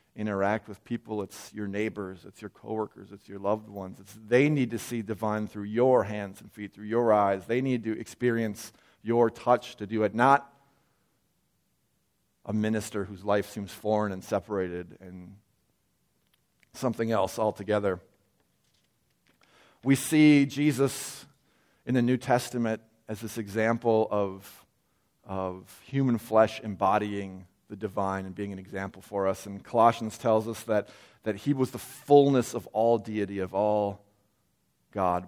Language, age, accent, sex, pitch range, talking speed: English, 40-59, American, male, 100-120 Hz, 150 wpm